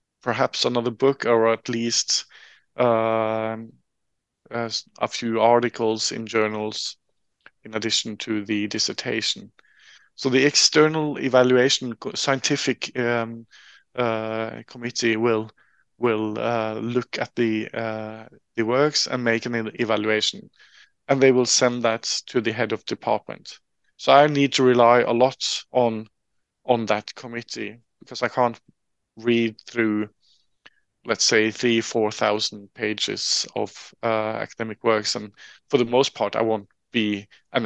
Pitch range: 110-125 Hz